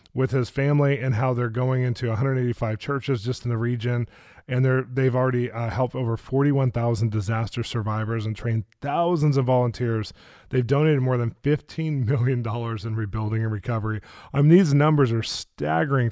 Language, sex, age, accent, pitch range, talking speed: English, male, 20-39, American, 115-140 Hz, 170 wpm